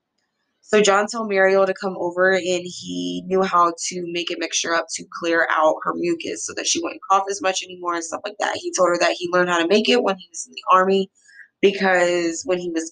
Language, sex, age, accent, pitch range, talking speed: English, female, 20-39, American, 170-215 Hz, 245 wpm